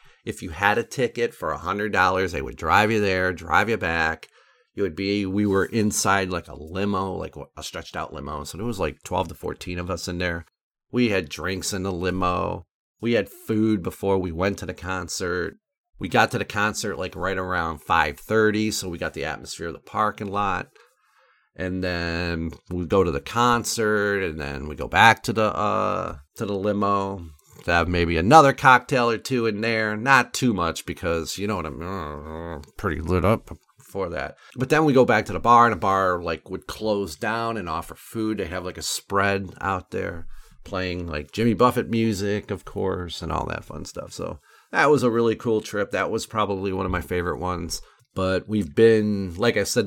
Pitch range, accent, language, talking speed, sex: 90-110 Hz, American, English, 205 wpm, male